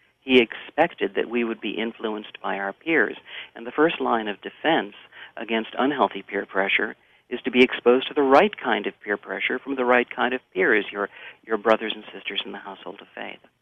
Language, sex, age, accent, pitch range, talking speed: English, male, 50-69, American, 110-130 Hz, 205 wpm